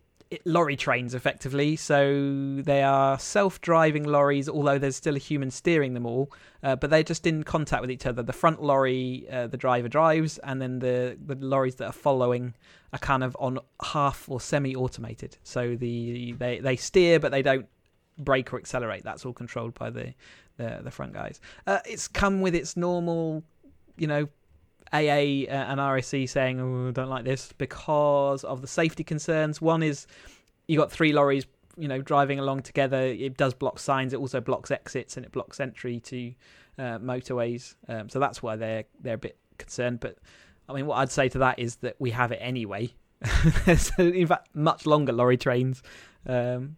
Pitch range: 125-155 Hz